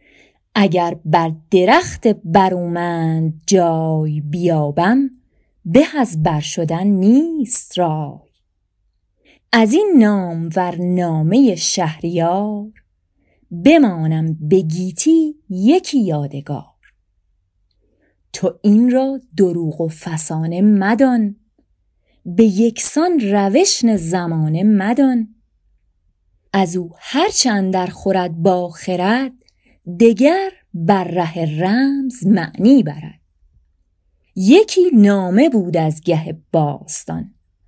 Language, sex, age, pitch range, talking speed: Persian, female, 30-49, 160-230 Hz, 80 wpm